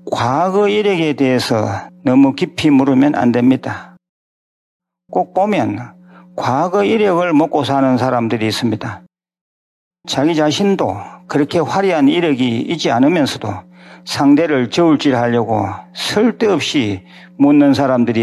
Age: 50-69